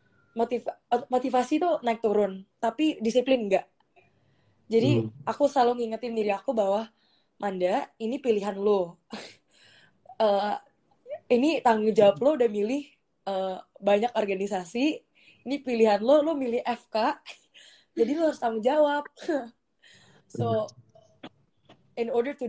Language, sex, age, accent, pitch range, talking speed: Indonesian, female, 20-39, native, 205-255 Hz, 115 wpm